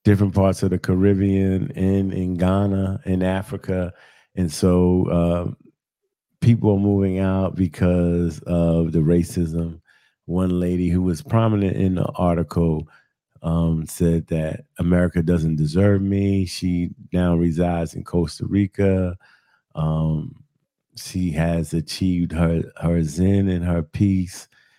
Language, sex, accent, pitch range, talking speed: English, male, American, 85-100 Hz, 125 wpm